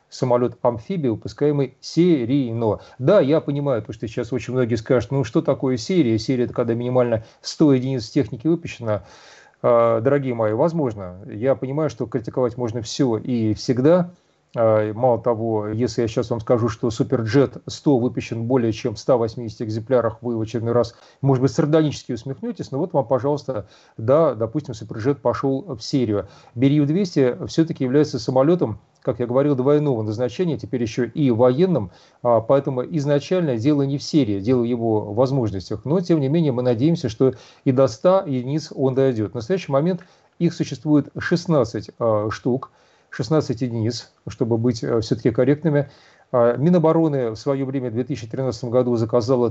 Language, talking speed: Russian, 155 wpm